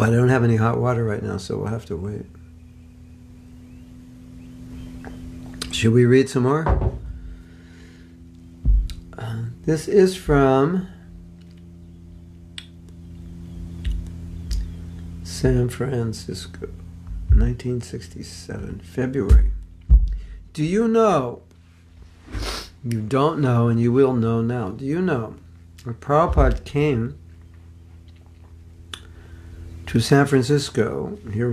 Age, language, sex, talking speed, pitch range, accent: 60-79, English, male, 90 wpm, 85-125 Hz, American